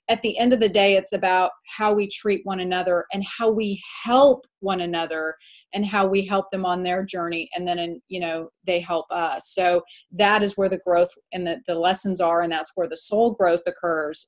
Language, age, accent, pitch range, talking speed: English, 30-49, American, 185-235 Hz, 215 wpm